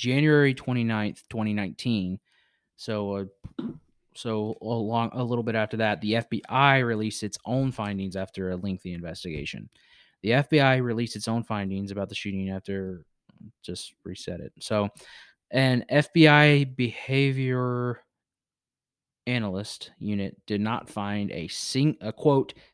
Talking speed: 125 wpm